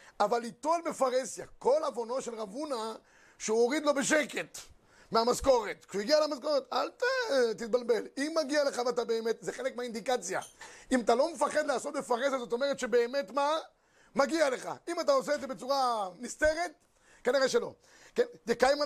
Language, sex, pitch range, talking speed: Hebrew, male, 235-295 Hz, 155 wpm